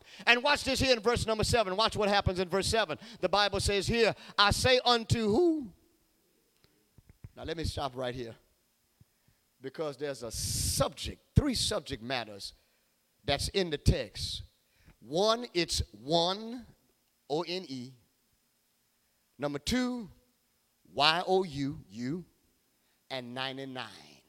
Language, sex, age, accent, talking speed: English, male, 40-59, American, 120 wpm